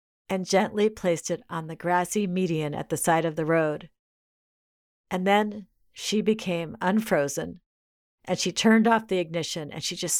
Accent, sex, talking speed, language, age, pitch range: American, female, 165 wpm, English, 50-69, 170-215 Hz